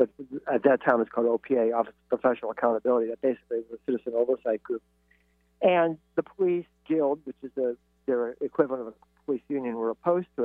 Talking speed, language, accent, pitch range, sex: 190 wpm, English, American, 115-160 Hz, male